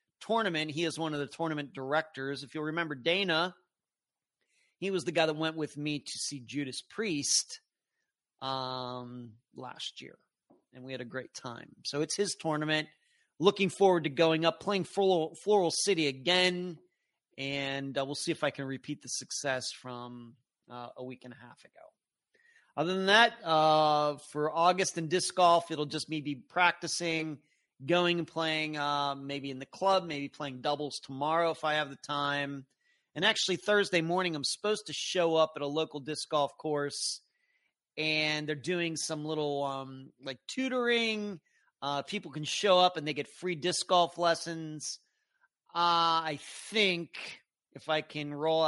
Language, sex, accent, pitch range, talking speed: English, male, American, 145-180 Hz, 170 wpm